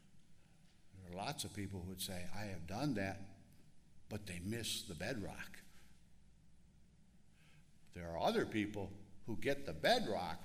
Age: 60-79